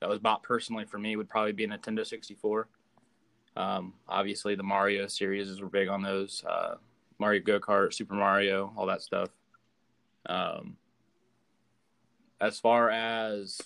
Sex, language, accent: male, English, American